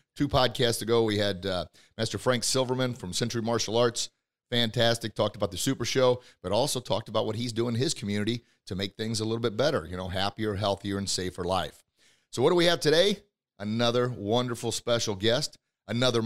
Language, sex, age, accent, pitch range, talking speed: English, male, 30-49, American, 105-125 Hz, 200 wpm